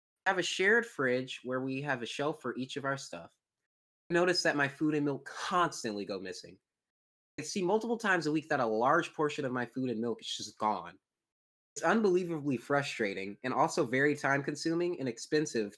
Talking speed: 200 wpm